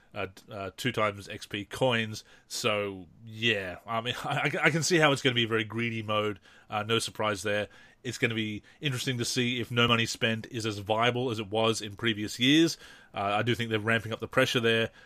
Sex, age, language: male, 30-49, English